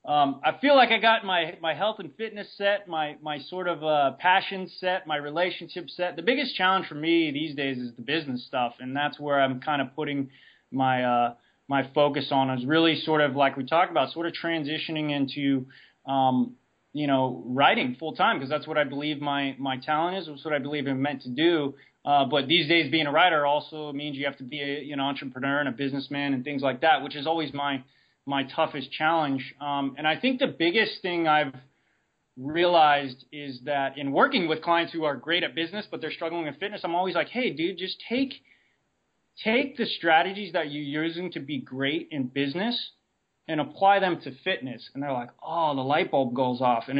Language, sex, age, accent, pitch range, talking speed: English, male, 20-39, American, 140-170 Hz, 215 wpm